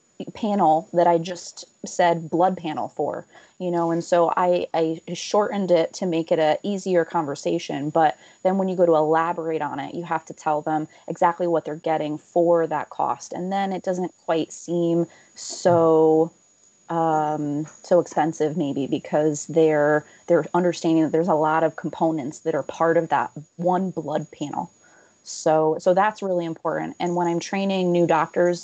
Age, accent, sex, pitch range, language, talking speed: 20-39, American, female, 160-180 Hz, English, 175 wpm